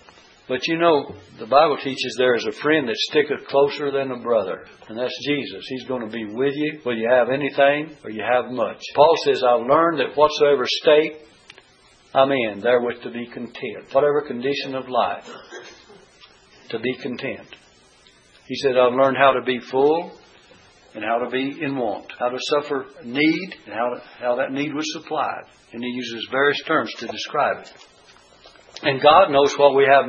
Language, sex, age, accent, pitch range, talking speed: English, male, 60-79, American, 125-165 Hz, 185 wpm